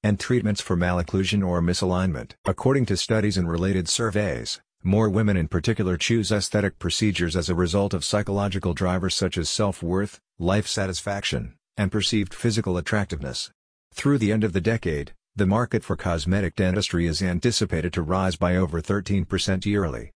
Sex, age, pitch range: male, 50-69, 90-105 Hz